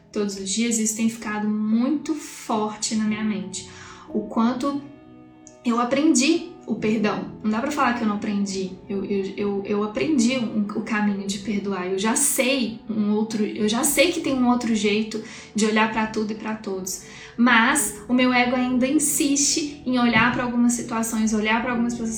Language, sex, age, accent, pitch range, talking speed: Portuguese, female, 10-29, Brazilian, 210-250 Hz, 195 wpm